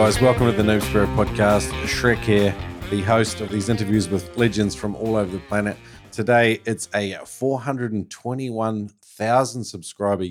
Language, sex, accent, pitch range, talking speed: English, male, Australian, 100-115 Hz, 145 wpm